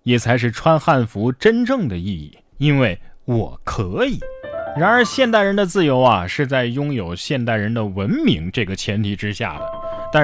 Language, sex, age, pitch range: Chinese, male, 20-39, 110-165 Hz